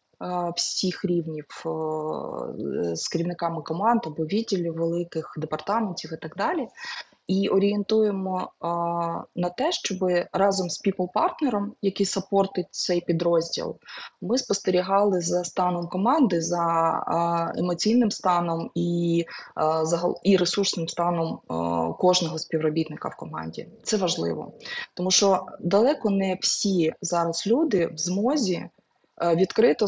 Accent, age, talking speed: native, 20-39, 105 wpm